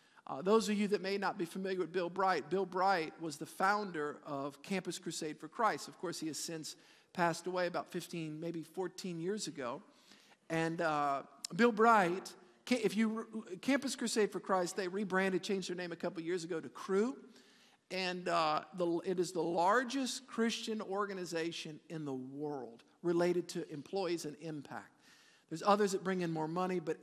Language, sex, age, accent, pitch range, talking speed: English, male, 50-69, American, 170-205 Hz, 175 wpm